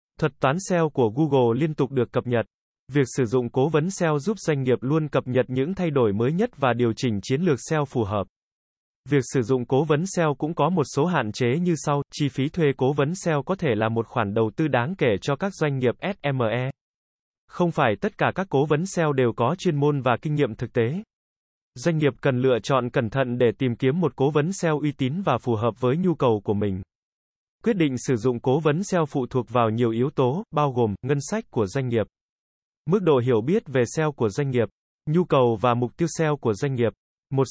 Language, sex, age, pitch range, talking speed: Vietnamese, male, 20-39, 125-155 Hz, 240 wpm